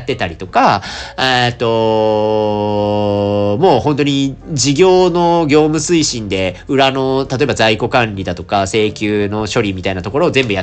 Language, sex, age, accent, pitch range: Japanese, male, 40-59, native, 105-150 Hz